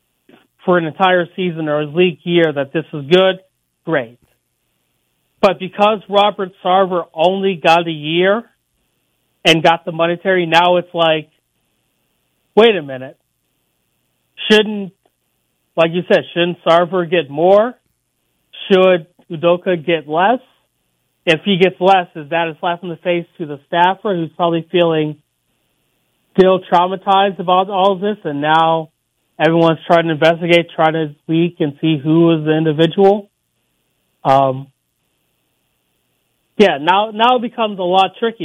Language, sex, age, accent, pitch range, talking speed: English, male, 40-59, American, 160-190 Hz, 140 wpm